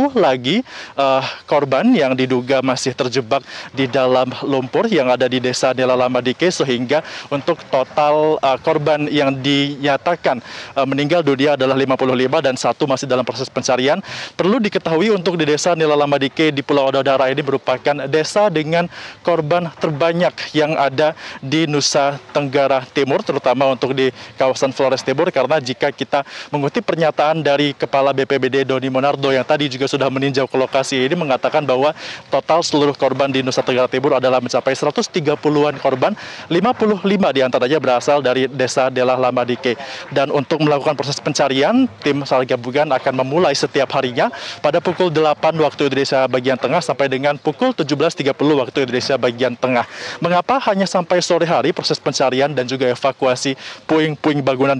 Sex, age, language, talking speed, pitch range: male, 20-39, Indonesian, 155 wpm, 130-155 Hz